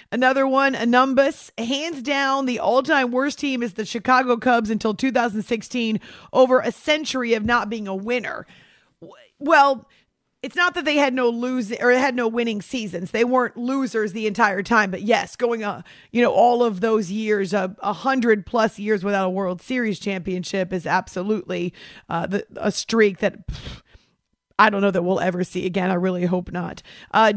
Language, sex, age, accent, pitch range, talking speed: English, female, 40-59, American, 200-250 Hz, 190 wpm